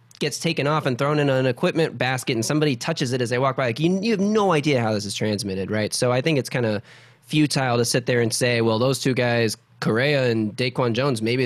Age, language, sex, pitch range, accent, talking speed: 20-39, English, male, 115-140 Hz, American, 255 wpm